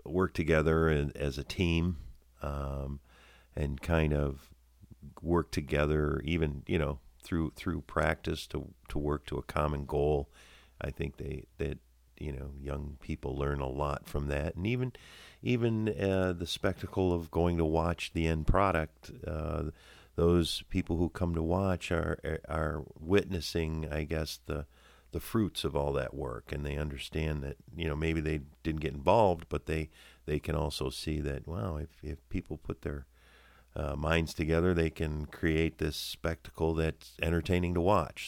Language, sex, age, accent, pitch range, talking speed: English, male, 50-69, American, 70-85 Hz, 165 wpm